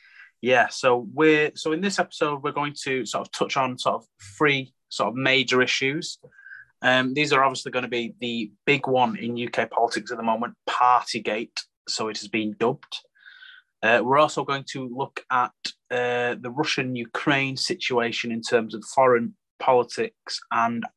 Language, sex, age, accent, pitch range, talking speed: English, male, 20-39, British, 120-150 Hz, 175 wpm